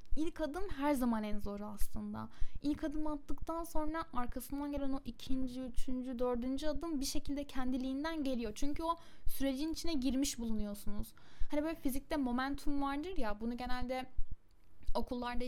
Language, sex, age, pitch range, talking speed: Turkish, female, 10-29, 235-285 Hz, 145 wpm